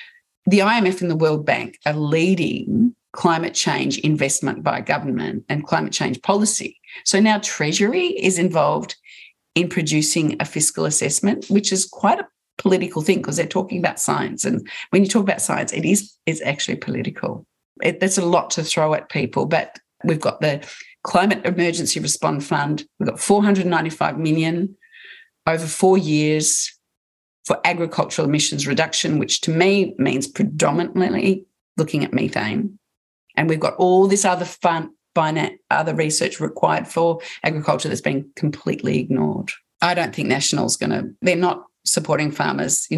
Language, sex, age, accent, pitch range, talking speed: English, female, 40-59, Australian, 155-195 Hz, 150 wpm